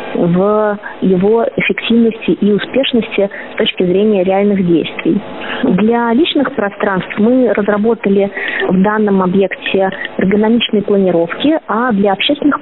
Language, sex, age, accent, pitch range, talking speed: Russian, female, 20-39, native, 195-235 Hz, 110 wpm